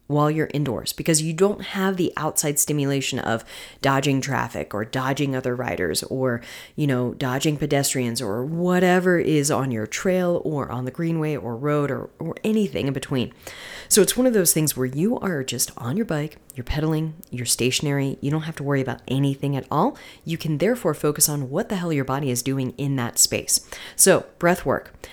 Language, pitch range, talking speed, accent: English, 130-170 Hz, 200 wpm, American